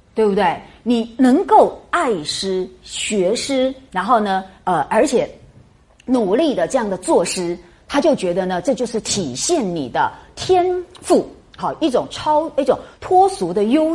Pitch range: 180-265 Hz